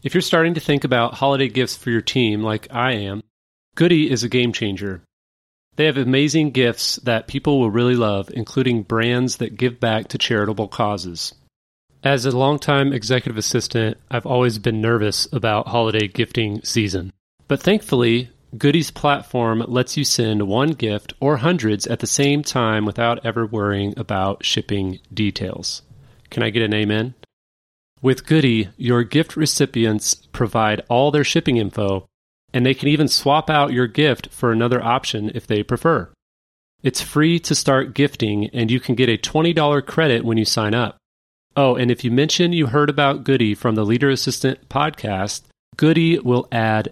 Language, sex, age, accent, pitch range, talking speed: English, male, 30-49, American, 110-140 Hz, 170 wpm